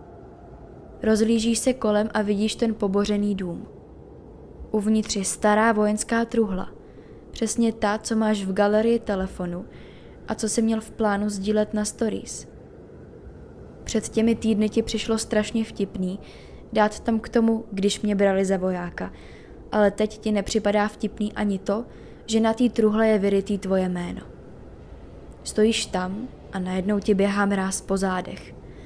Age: 10-29